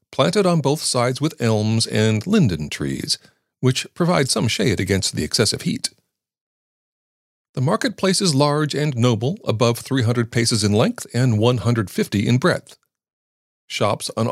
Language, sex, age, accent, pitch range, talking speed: English, male, 40-59, American, 100-150 Hz, 145 wpm